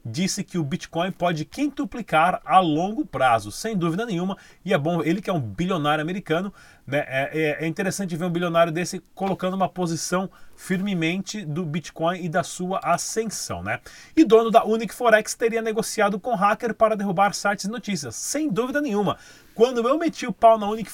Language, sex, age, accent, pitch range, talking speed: Portuguese, male, 30-49, Brazilian, 170-215 Hz, 185 wpm